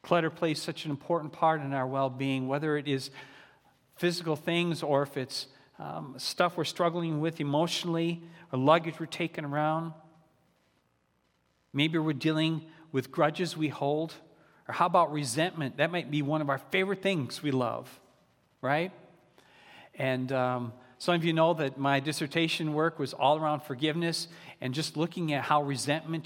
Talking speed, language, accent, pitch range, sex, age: 160 wpm, English, American, 140-175 Hz, male, 40-59